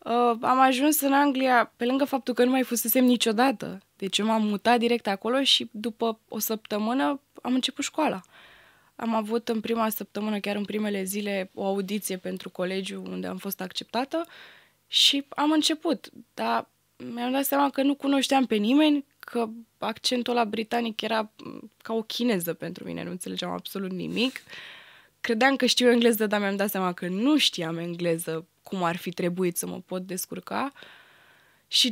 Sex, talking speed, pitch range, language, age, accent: female, 170 wpm, 190-255 Hz, Romanian, 20-39, native